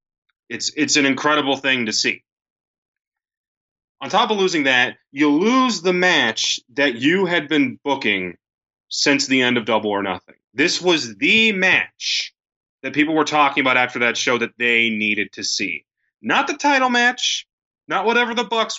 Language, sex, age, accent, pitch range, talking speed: English, male, 30-49, American, 115-155 Hz, 170 wpm